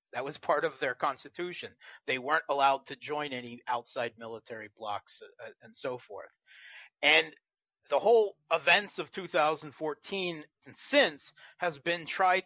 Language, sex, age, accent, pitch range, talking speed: English, male, 40-59, American, 125-170 Hz, 140 wpm